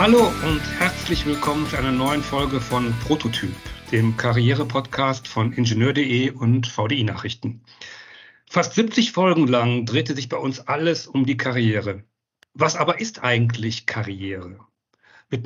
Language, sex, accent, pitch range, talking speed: German, male, German, 120-160 Hz, 130 wpm